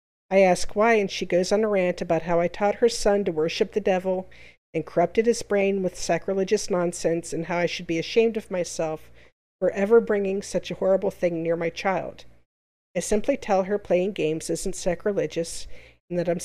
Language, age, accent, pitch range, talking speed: English, 50-69, American, 170-205 Hz, 200 wpm